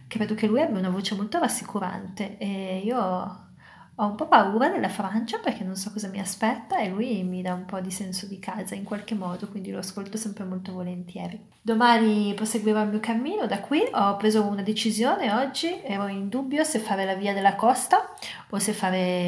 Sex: female